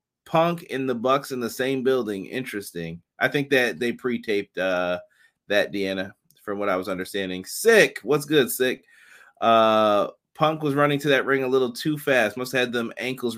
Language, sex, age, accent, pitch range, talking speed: English, male, 30-49, American, 105-135 Hz, 185 wpm